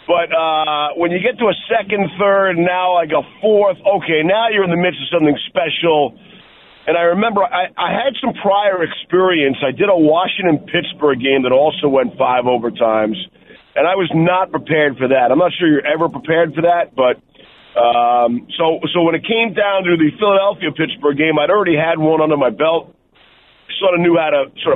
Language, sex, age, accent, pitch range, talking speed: English, male, 50-69, American, 155-190 Hz, 195 wpm